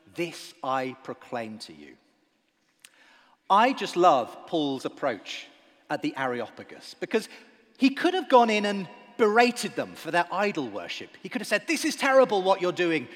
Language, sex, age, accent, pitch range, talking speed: English, male, 40-59, British, 170-255 Hz, 165 wpm